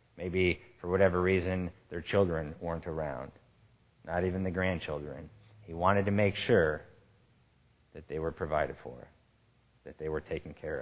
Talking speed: 150 wpm